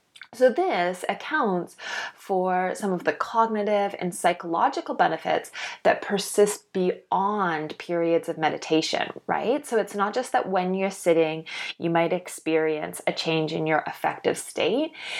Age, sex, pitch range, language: 20-39, female, 175-230 Hz, English